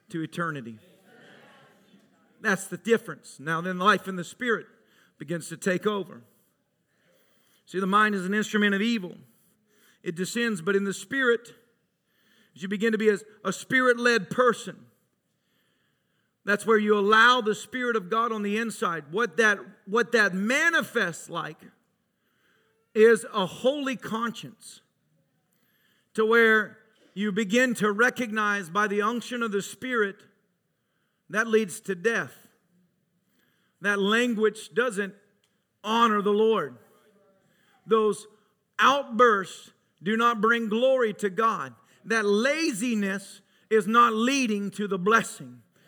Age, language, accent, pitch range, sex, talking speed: 50-69, English, American, 195-230 Hz, male, 125 wpm